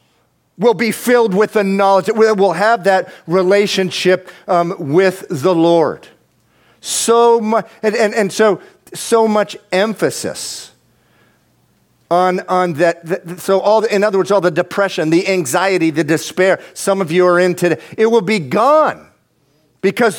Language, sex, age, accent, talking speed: English, male, 50-69, American, 155 wpm